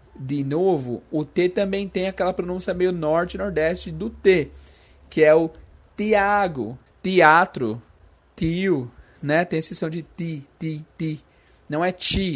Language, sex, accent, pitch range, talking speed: Portuguese, male, Brazilian, 155-200 Hz, 140 wpm